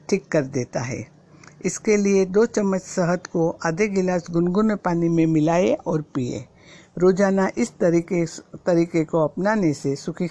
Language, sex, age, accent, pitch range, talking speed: Hindi, female, 60-79, native, 160-190 Hz, 150 wpm